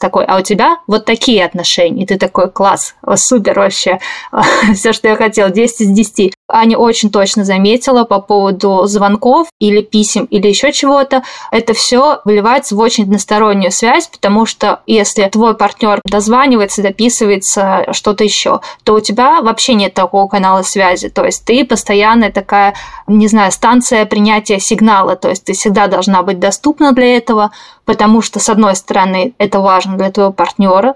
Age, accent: 20-39, native